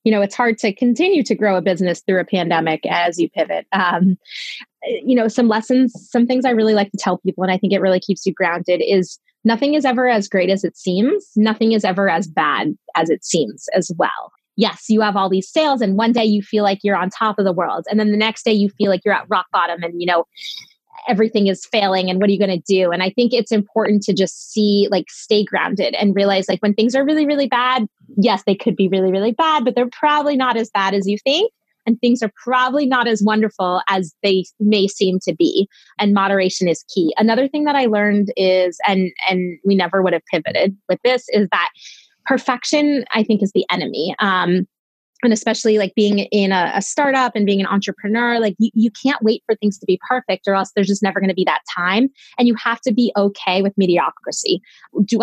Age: 20-39